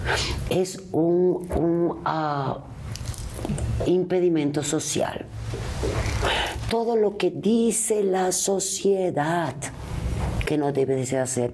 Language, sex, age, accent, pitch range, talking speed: Spanish, female, 40-59, Mexican, 115-165 Hz, 80 wpm